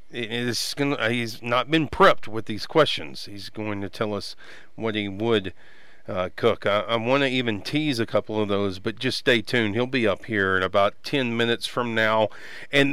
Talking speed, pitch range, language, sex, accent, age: 210 wpm, 110-145 Hz, English, male, American, 40-59